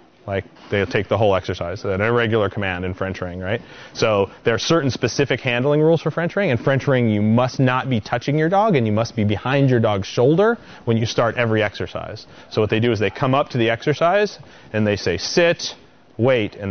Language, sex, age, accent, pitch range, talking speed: English, male, 30-49, American, 105-140 Hz, 225 wpm